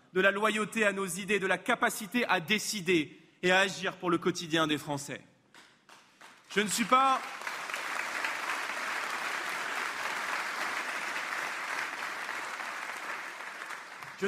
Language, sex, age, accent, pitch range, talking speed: French, male, 30-49, French, 180-215 Hz, 100 wpm